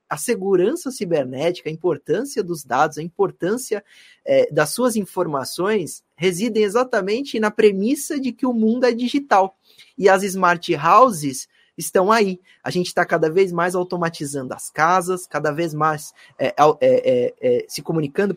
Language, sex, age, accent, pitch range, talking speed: Portuguese, male, 20-39, Brazilian, 170-230 Hz, 135 wpm